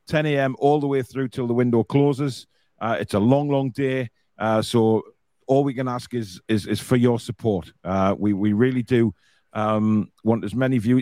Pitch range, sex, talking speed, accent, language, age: 105-125 Hz, male, 210 wpm, British, English, 40-59